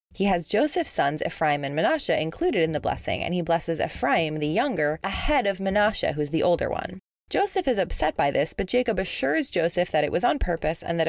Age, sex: 20-39, female